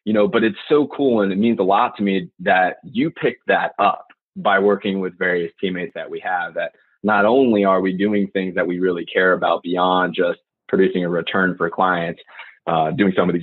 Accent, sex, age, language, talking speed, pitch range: American, male, 20-39, English, 225 wpm, 95-120 Hz